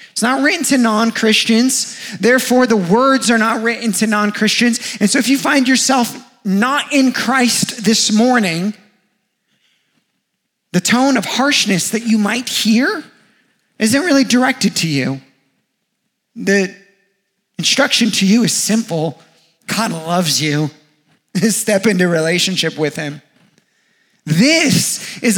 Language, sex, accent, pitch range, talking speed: English, male, American, 200-240 Hz, 125 wpm